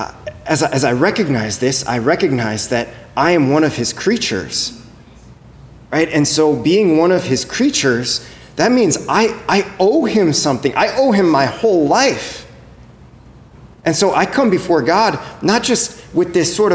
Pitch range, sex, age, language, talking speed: 135-195 Hz, male, 30-49, English, 170 wpm